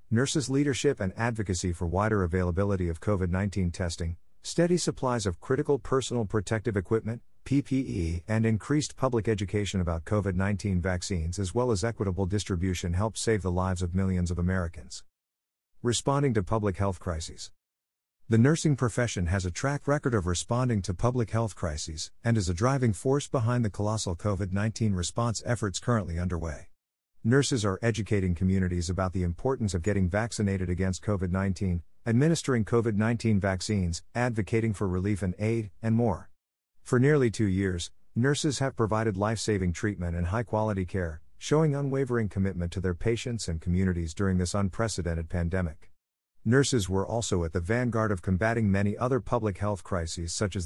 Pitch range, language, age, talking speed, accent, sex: 90-115 Hz, English, 50-69, 155 wpm, American, male